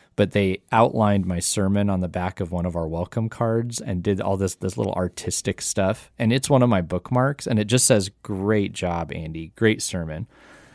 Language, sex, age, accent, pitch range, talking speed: English, male, 20-39, American, 90-120 Hz, 205 wpm